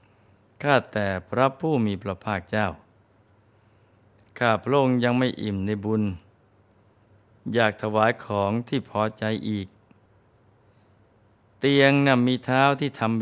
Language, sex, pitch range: Thai, male, 100-115 Hz